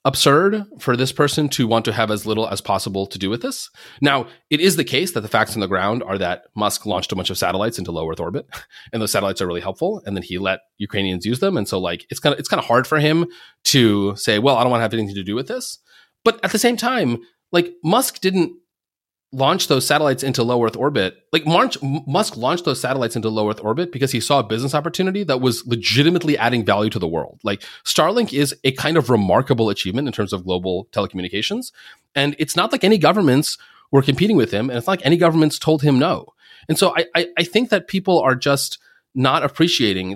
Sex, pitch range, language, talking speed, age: male, 110-160 Hz, English, 240 wpm, 30-49